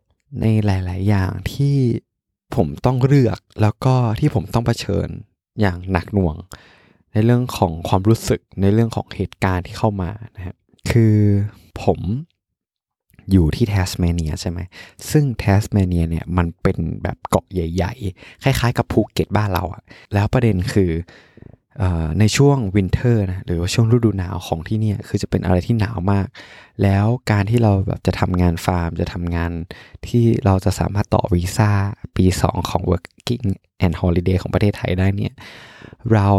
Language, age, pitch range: Thai, 20-39, 90-110 Hz